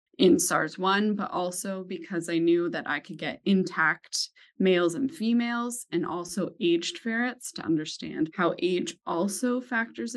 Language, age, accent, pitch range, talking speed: English, 20-39, American, 170-220 Hz, 150 wpm